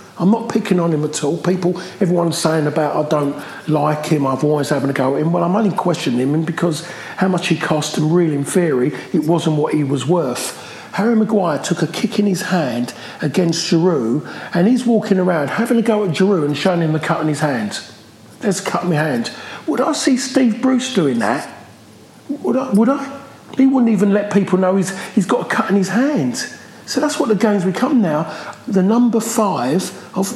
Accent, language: British, English